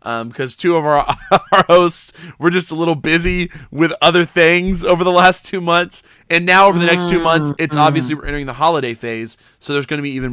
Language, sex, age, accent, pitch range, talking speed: English, male, 20-39, American, 115-160 Hz, 230 wpm